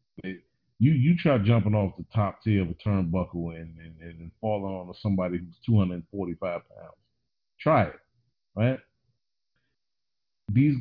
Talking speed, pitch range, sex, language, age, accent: 140 wpm, 95-130 Hz, male, English, 40-59, American